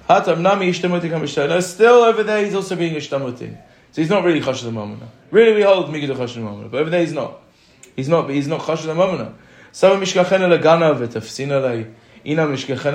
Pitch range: 125-160 Hz